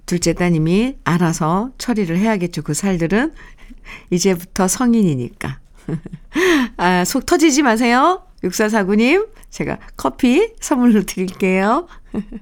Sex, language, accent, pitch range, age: female, Korean, native, 185-275 Hz, 50-69